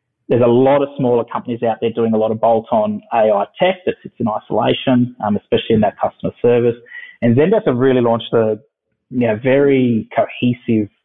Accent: Australian